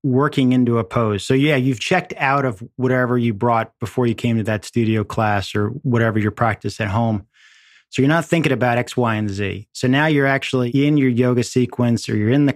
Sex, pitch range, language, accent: male, 115-135 Hz, English, American